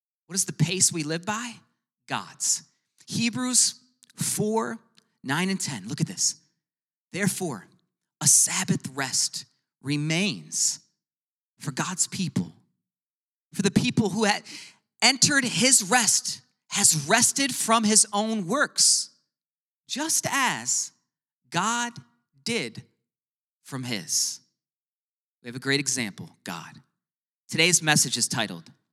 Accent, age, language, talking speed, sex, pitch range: American, 40-59, English, 110 wpm, male, 145-210 Hz